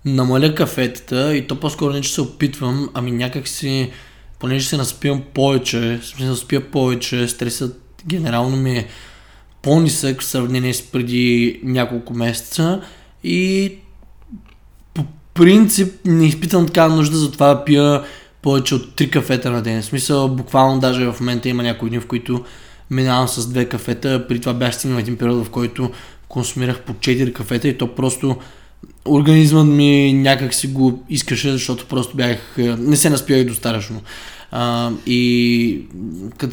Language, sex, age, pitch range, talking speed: Bulgarian, male, 20-39, 125-150 Hz, 155 wpm